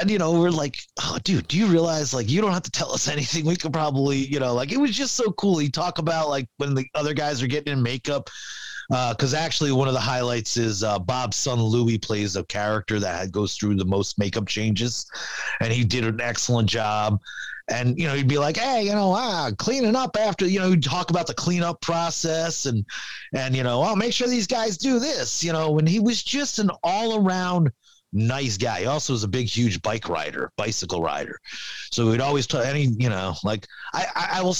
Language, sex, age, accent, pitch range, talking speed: English, male, 30-49, American, 115-165 Hz, 230 wpm